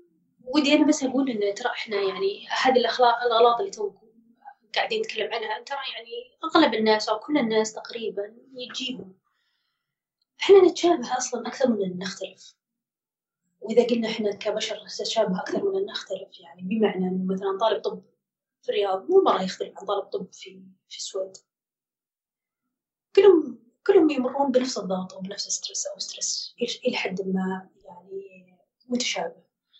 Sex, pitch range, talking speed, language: female, 195-285 Hz, 145 wpm, Arabic